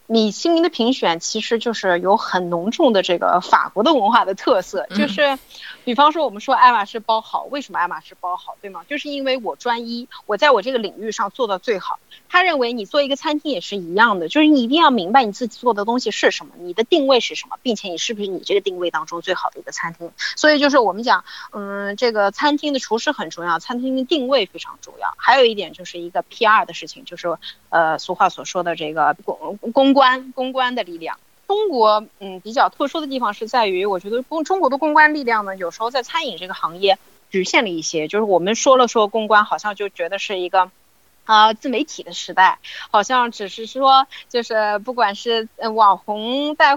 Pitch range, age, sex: 195-280 Hz, 30-49, female